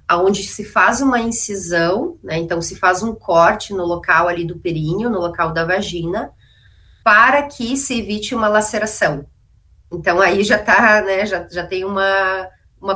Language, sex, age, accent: Portuguese, female, 30-49, Brazilian